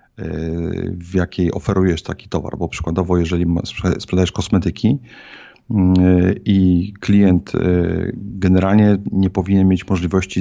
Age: 40-59